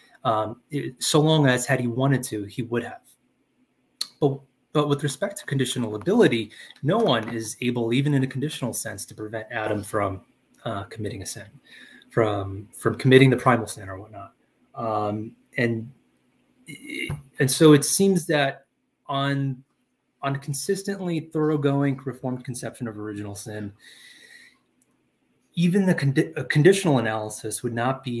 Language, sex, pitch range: English, male, 110-145 Hz